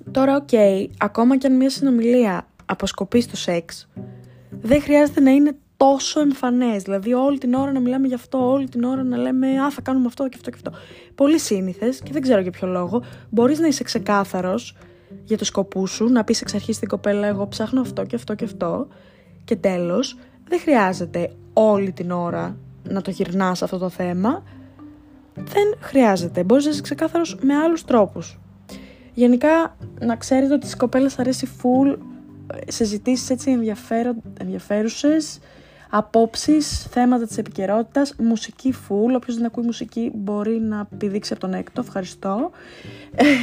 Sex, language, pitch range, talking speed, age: female, Greek, 195-270 Hz, 160 wpm, 20-39